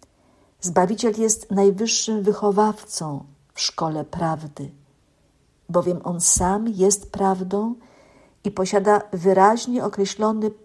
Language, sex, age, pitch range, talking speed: Polish, female, 50-69, 175-210 Hz, 90 wpm